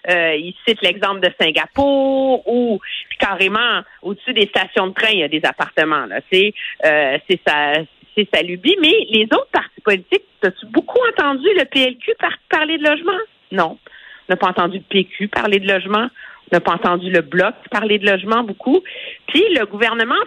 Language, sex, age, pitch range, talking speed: French, female, 50-69, 190-275 Hz, 185 wpm